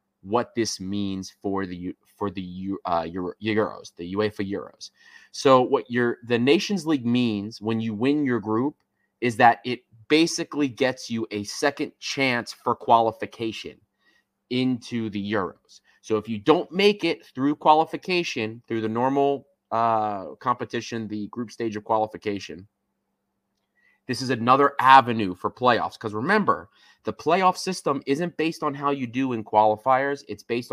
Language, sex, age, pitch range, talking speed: English, male, 30-49, 105-140 Hz, 150 wpm